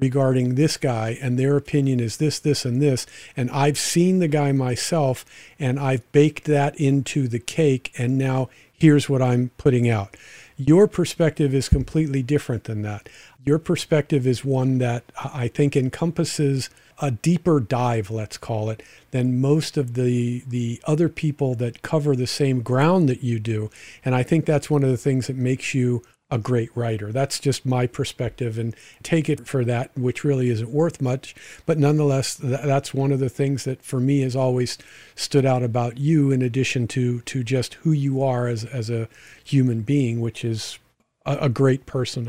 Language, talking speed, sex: English, 185 wpm, male